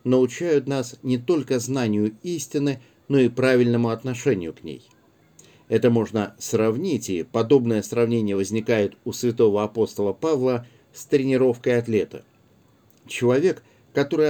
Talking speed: 120 wpm